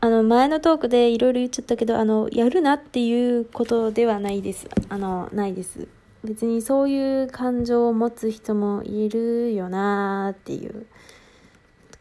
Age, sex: 20-39, female